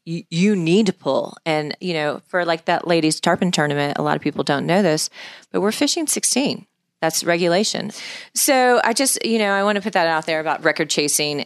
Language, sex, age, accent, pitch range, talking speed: English, female, 30-49, American, 140-170 Hz, 215 wpm